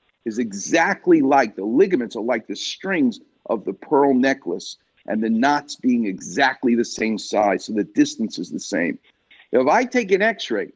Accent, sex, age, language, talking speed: American, male, 50-69, English, 180 wpm